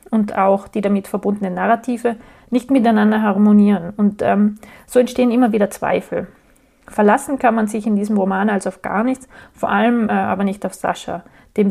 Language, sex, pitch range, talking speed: German, female, 200-235 Hz, 180 wpm